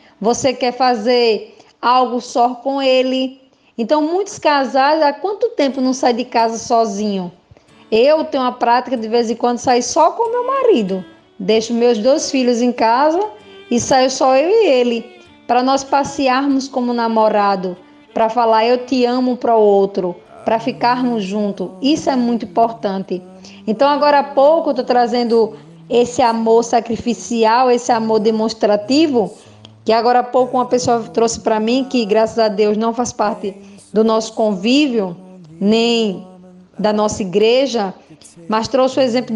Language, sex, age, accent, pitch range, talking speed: Portuguese, female, 20-39, Brazilian, 215-260 Hz, 160 wpm